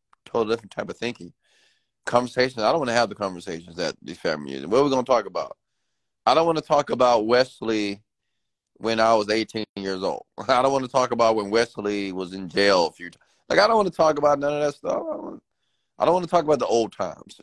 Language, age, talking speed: English, 30-49, 245 wpm